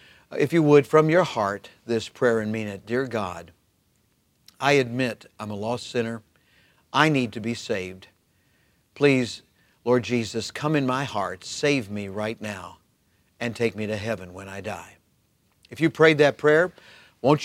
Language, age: English, 50-69